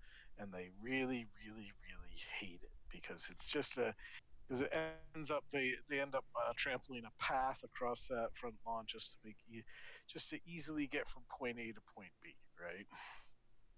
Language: English